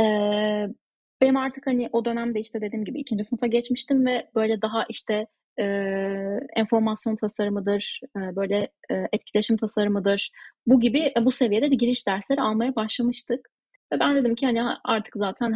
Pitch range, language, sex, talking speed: 200-250 Hz, Turkish, female, 155 wpm